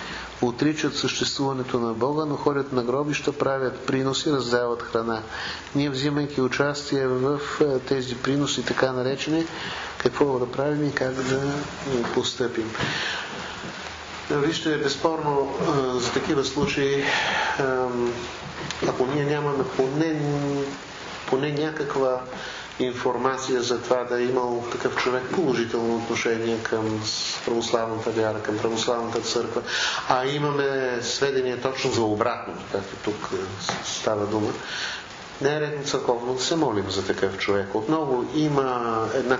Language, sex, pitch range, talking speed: Bulgarian, male, 120-145 Hz, 115 wpm